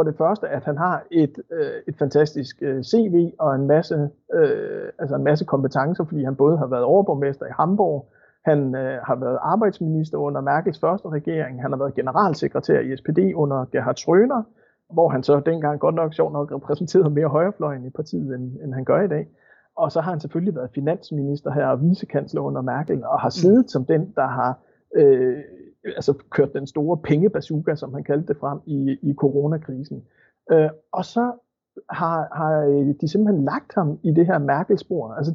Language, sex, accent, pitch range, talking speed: Danish, male, native, 145-210 Hz, 190 wpm